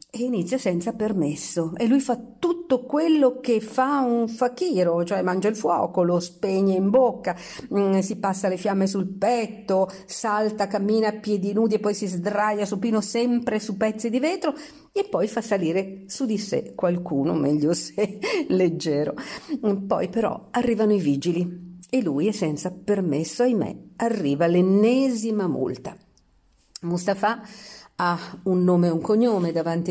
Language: Italian